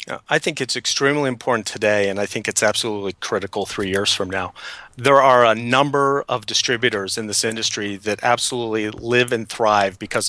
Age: 40-59